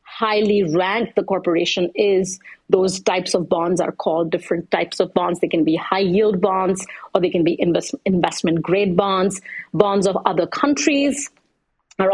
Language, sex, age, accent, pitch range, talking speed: English, female, 30-49, Indian, 175-215 Hz, 155 wpm